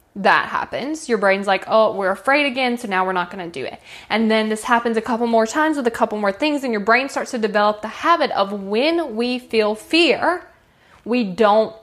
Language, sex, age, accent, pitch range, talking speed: English, female, 10-29, American, 200-275 Hz, 230 wpm